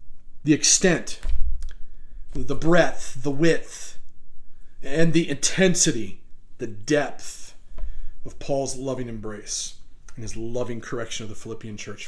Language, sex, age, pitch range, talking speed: English, male, 40-59, 135-200 Hz, 115 wpm